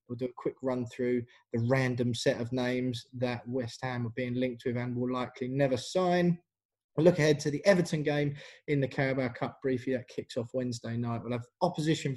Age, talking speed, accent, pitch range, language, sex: 20-39, 210 wpm, British, 125-150 Hz, English, male